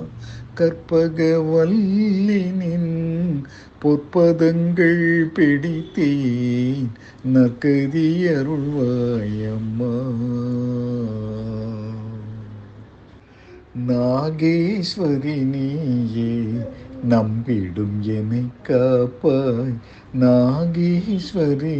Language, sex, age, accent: Tamil, male, 50-69, native